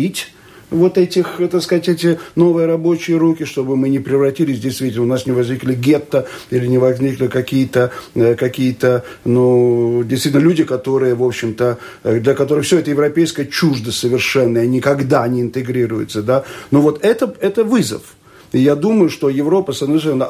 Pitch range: 120-145 Hz